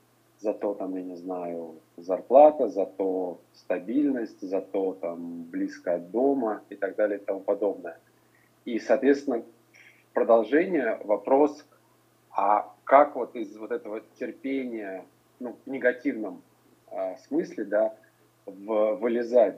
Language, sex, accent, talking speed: Russian, male, native, 110 wpm